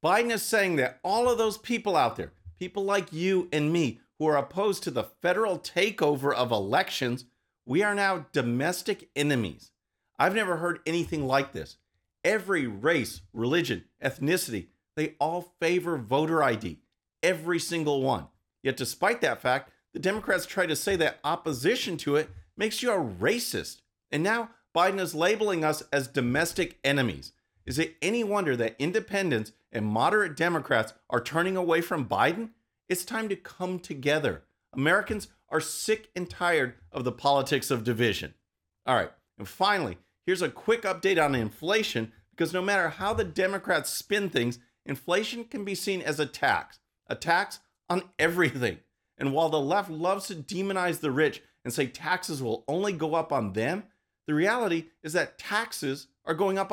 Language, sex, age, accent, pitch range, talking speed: English, male, 40-59, American, 135-190 Hz, 165 wpm